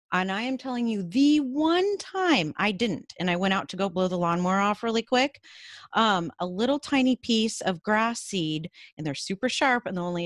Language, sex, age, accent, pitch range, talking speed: English, female, 30-49, American, 170-225 Hz, 210 wpm